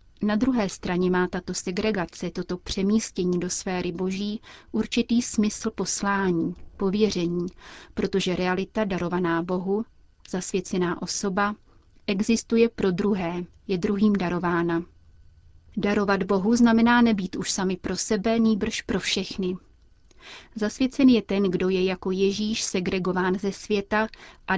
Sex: female